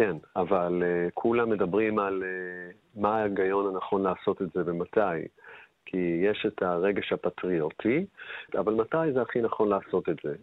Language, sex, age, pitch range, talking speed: Hebrew, male, 40-59, 90-110 Hz, 155 wpm